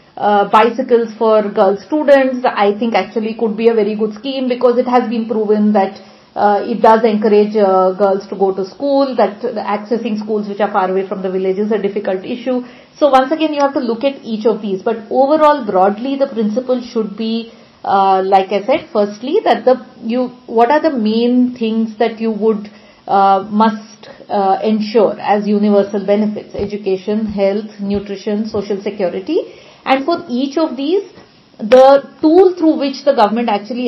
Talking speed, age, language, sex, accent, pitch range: 180 wpm, 50-69, English, female, Indian, 210-260 Hz